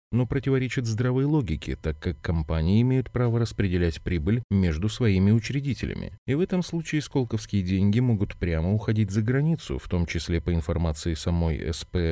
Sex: male